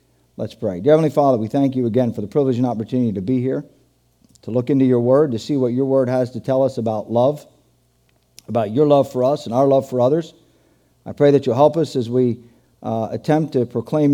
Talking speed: 235 wpm